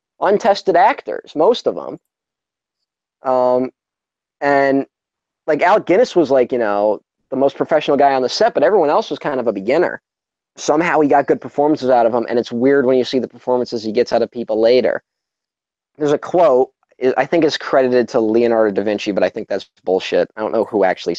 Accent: American